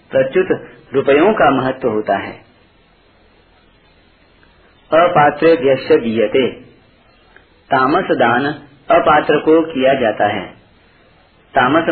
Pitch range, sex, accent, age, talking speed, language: 135-180 Hz, male, native, 40-59, 75 wpm, Hindi